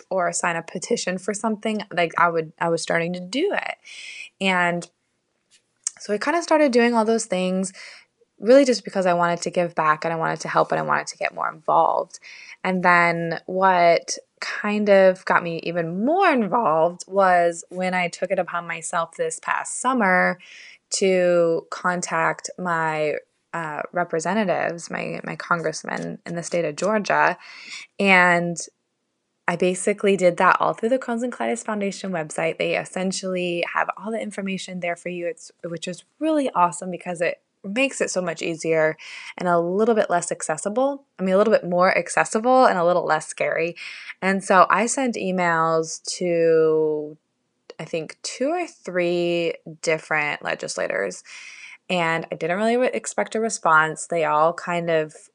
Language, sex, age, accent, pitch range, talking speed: English, female, 20-39, American, 170-215 Hz, 165 wpm